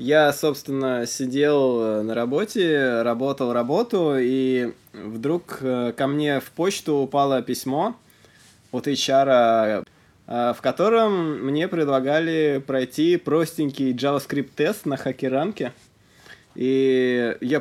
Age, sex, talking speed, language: 20-39, male, 95 wpm, Russian